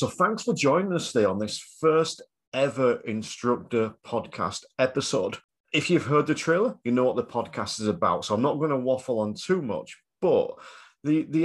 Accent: British